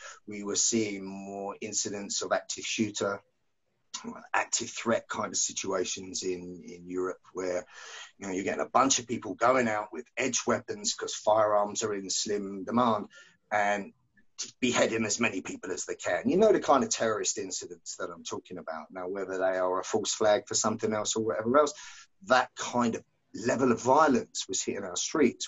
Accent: British